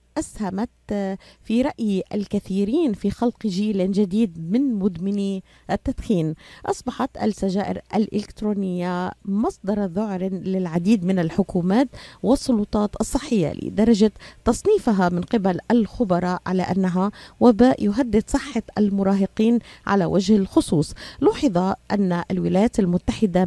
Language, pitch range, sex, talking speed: Arabic, 185-225 Hz, female, 100 wpm